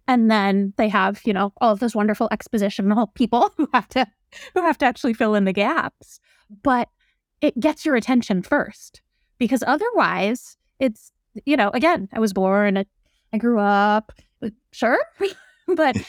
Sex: female